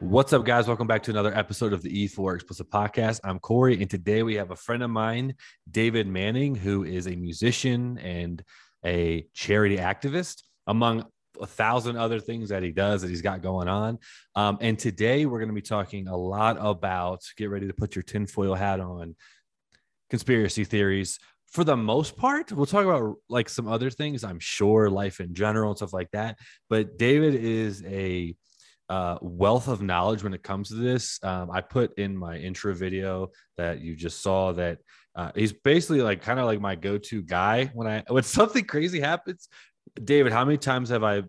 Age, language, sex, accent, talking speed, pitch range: 20-39, English, male, American, 195 wpm, 95-125 Hz